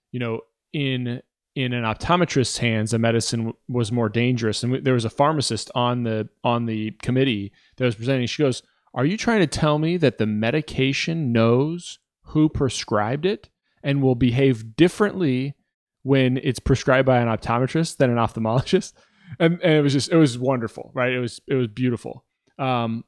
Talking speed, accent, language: 180 wpm, American, English